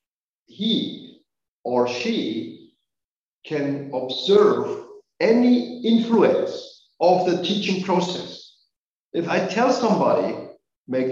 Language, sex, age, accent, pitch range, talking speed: English, male, 50-69, German, 155-215 Hz, 85 wpm